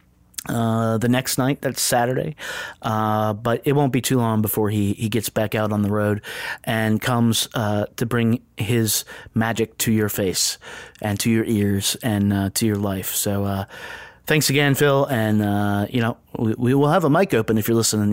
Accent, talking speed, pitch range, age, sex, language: American, 200 wpm, 110-130 Hz, 30-49, male, English